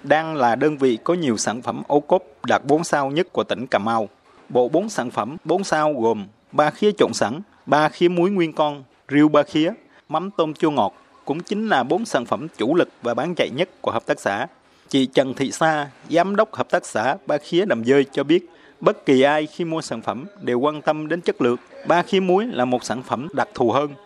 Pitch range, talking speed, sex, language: 130-170 Hz, 235 wpm, male, Vietnamese